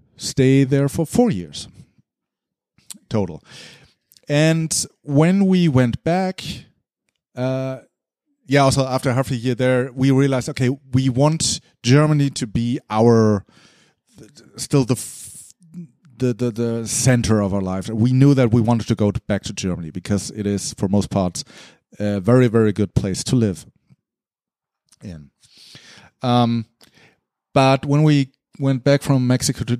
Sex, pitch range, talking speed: male, 115-145 Hz, 140 wpm